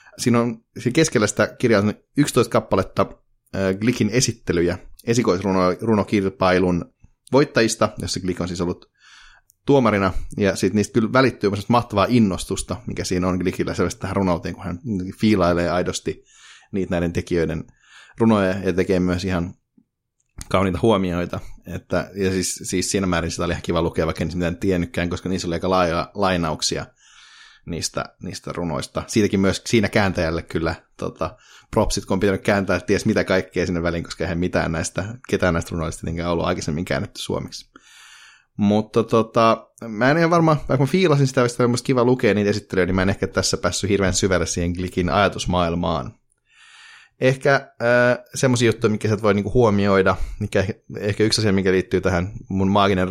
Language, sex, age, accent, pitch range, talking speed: Finnish, male, 30-49, native, 90-115 Hz, 160 wpm